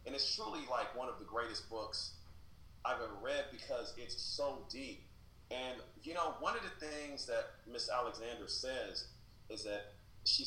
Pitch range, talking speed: 100-130 Hz, 170 wpm